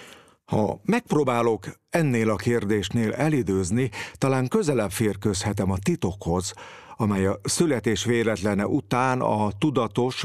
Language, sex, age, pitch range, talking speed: Hungarian, male, 50-69, 95-125 Hz, 105 wpm